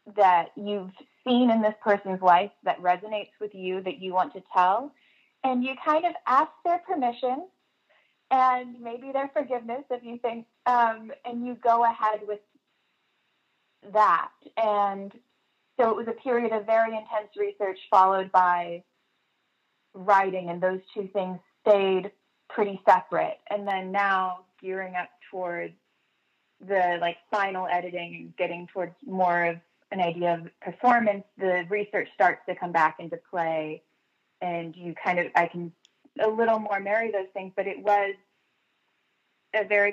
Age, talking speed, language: 20-39, 150 wpm, English